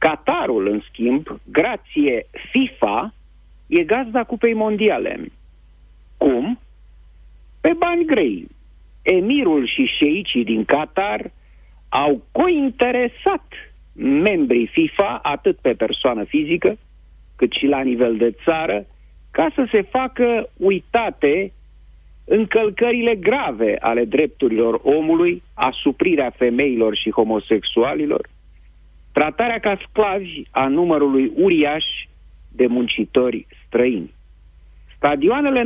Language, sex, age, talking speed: Romanian, male, 50-69, 95 wpm